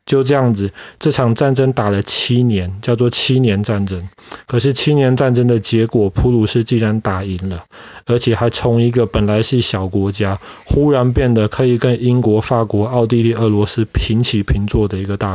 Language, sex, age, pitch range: Chinese, male, 20-39, 105-135 Hz